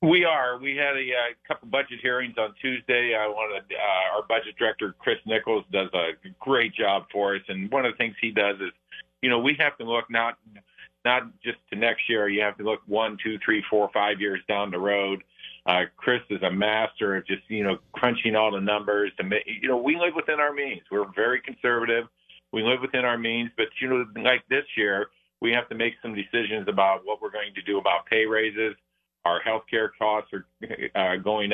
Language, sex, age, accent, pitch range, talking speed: English, male, 50-69, American, 100-120 Hz, 220 wpm